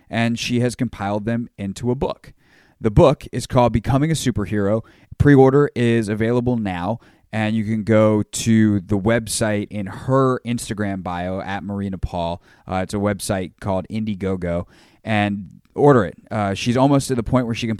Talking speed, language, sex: 170 wpm, English, male